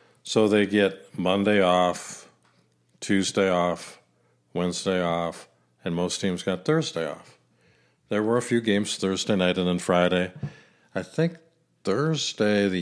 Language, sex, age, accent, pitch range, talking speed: English, male, 50-69, American, 90-105 Hz, 135 wpm